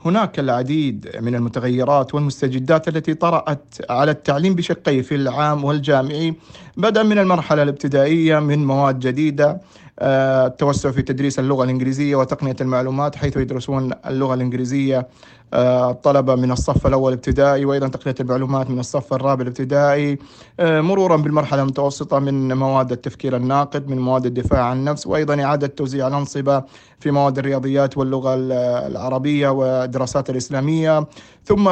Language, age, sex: Arabic, 30-49, male